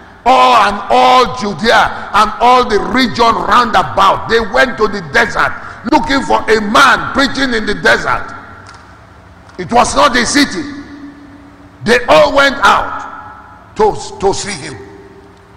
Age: 50-69